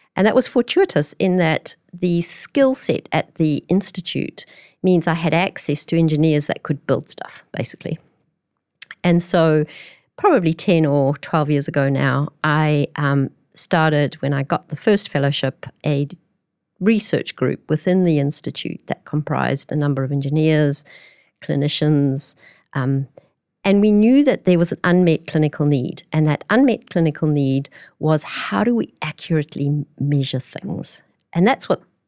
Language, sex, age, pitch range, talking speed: English, female, 40-59, 145-180 Hz, 150 wpm